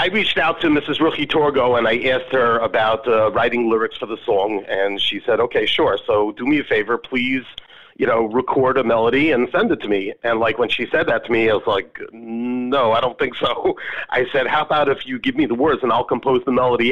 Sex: male